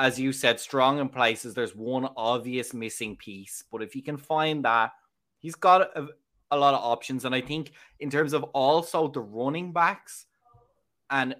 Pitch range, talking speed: 110-140 Hz, 185 wpm